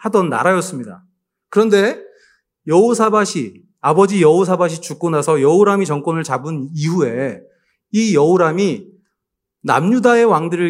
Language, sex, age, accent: Korean, male, 30-49, native